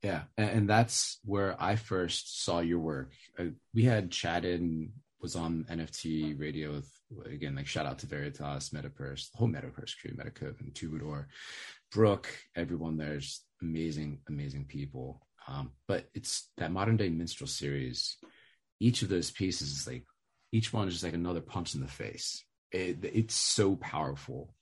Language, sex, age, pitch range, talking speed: English, male, 30-49, 80-105 Hz, 165 wpm